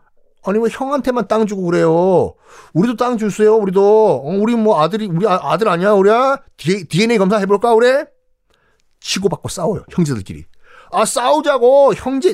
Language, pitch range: Korean, 140-230 Hz